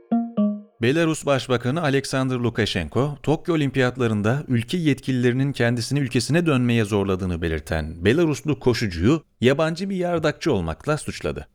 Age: 40-59